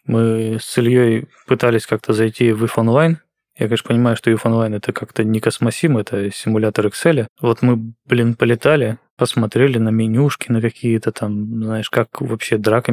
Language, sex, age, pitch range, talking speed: Russian, male, 20-39, 110-120 Hz, 160 wpm